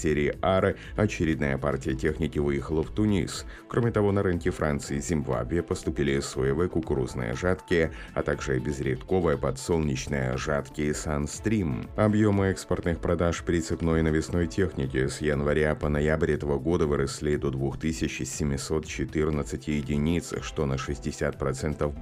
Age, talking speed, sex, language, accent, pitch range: 30-49, 125 wpm, male, Russian, native, 70-85 Hz